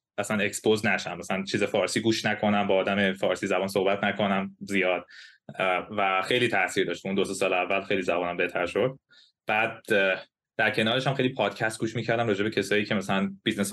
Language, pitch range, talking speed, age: Persian, 100-130 Hz, 175 wpm, 20-39